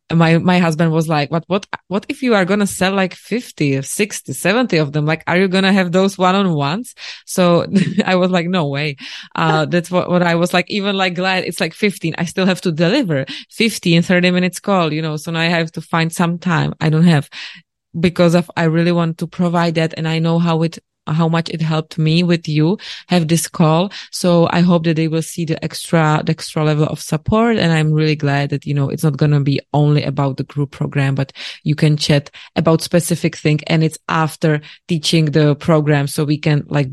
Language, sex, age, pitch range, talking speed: English, female, 20-39, 150-175 Hz, 230 wpm